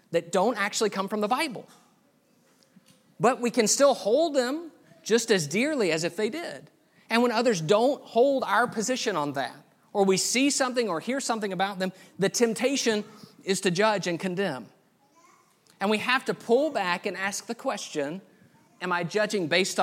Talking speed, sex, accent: 180 wpm, male, American